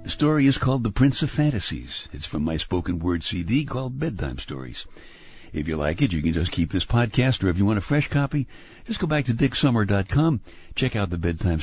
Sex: male